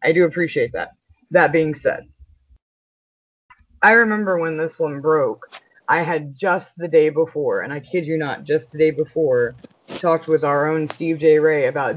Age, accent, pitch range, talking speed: 20-39, American, 155-195 Hz, 180 wpm